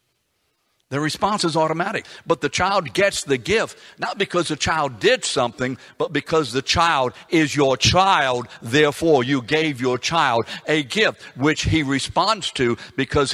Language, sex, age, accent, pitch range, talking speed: English, male, 60-79, American, 105-145 Hz, 155 wpm